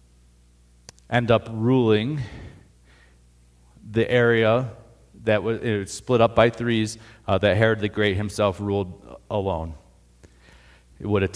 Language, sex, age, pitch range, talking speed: English, male, 40-59, 90-115 Hz, 120 wpm